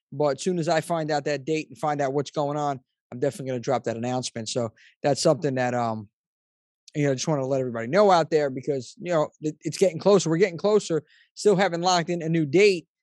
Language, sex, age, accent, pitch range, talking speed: English, male, 20-39, American, 145-185 Hz, 250 wpm